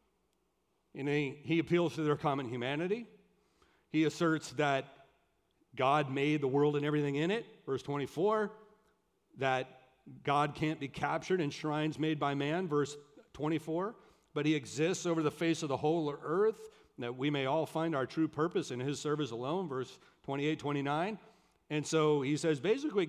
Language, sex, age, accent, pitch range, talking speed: English, male, 40-59, American, 140-165 Hz, 160 wpm